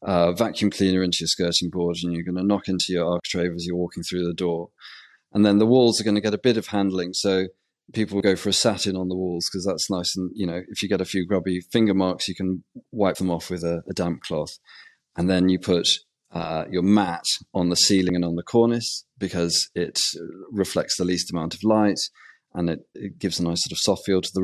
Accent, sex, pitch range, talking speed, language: British, male, 85-100 Hz, 245 wpm, English